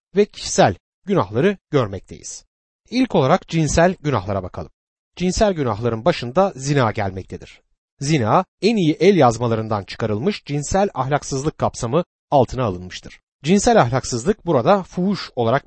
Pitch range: 120-185 Hz